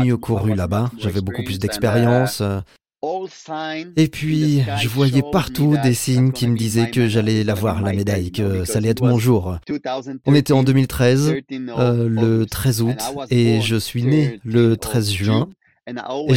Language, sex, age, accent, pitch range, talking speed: French, male, 30-49, French, 110-135 Hz, 160 wpm